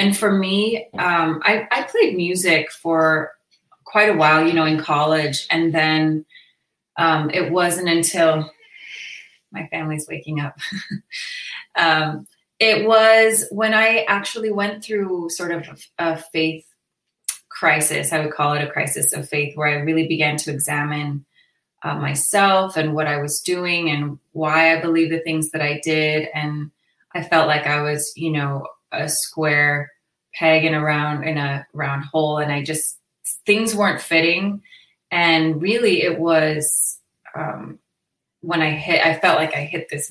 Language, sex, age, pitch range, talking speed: English, female, 20-39, 150-175 Hz, 160 wpm